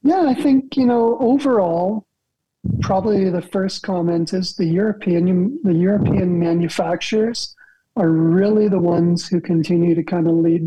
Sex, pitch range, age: male, 175-200 Hz, 40-59